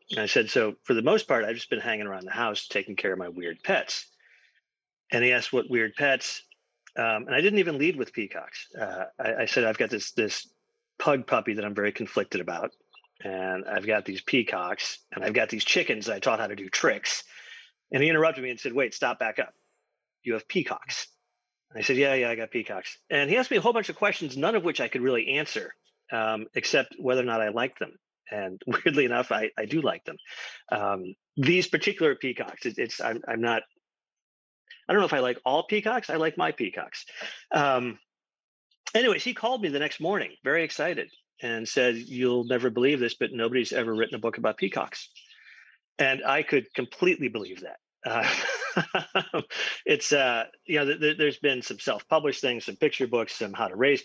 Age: 40-59